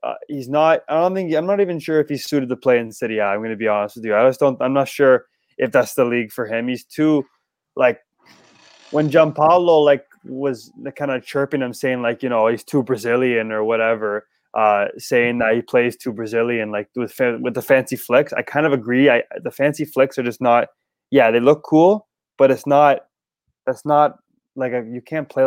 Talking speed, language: 230 wpm, English